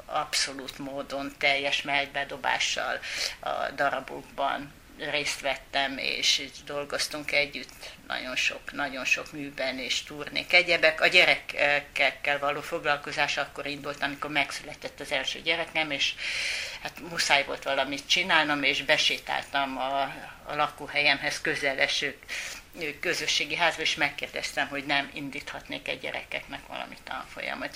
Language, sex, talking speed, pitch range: Hungarian, female, 120 wpm, 140-160 Hz